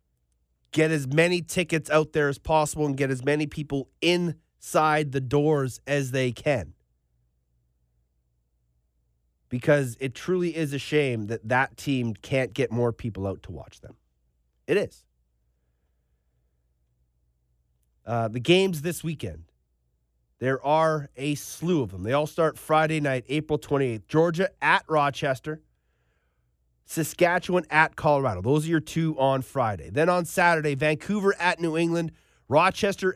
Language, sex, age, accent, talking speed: English, male, 30-49, American, 140 wpm